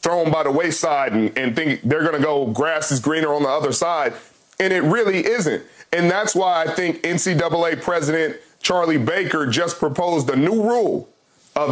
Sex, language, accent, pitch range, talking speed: male, English, American, 150-185 Hz, 190 wpm